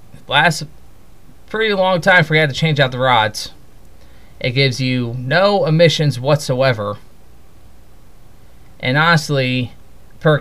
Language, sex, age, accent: English, male, 30-49, American